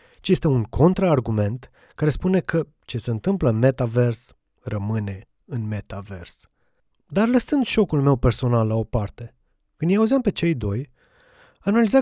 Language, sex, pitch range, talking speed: Romanian, male, 120-190 Hz, 150 wpm